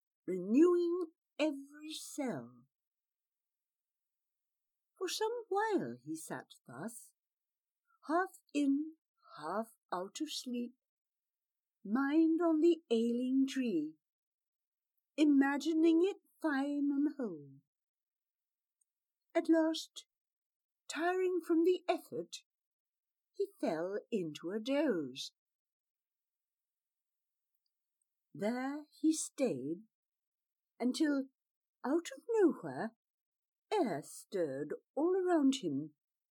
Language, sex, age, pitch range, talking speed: English, female, 60-79, 225-335 Hz, 80 wpm